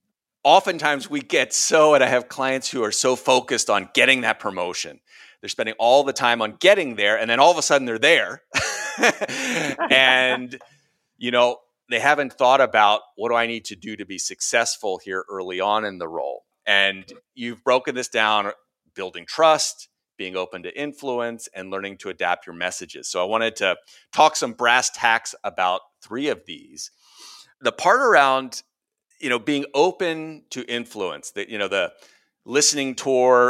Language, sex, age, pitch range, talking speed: English, male, 40-59, 110-145 Hz, 175 wpm